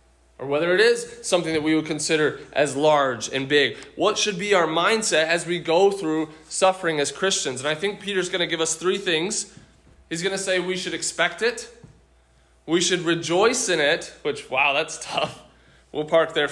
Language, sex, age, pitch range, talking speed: English, male, 20-39, 150-185 Hz, 200 wpm